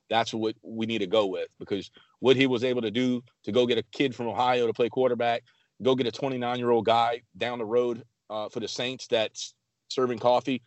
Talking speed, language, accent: 230 wpm, English, American